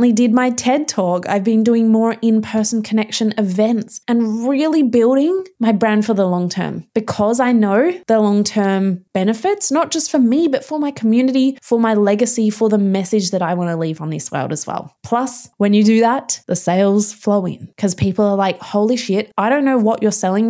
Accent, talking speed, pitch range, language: Australian, 205 wpm, 195-240 Hz, English